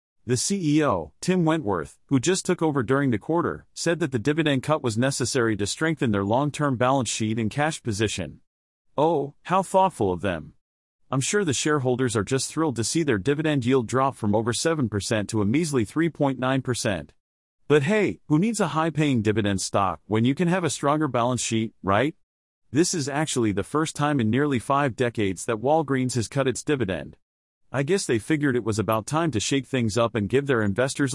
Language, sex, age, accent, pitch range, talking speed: English, male, 40-59, American, 115-150 Hz, 195 wpm